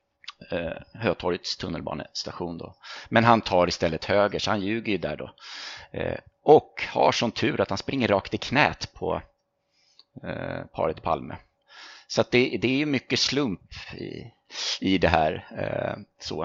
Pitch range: 90-120 Hz